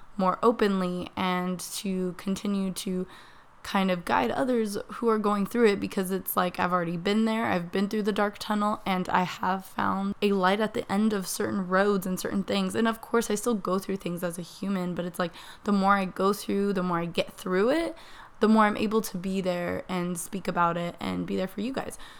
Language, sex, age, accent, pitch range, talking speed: English, female, 20-39, American, 185-215 Hz, 230 wpm